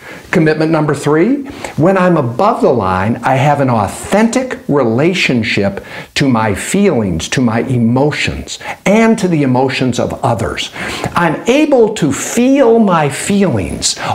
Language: Persian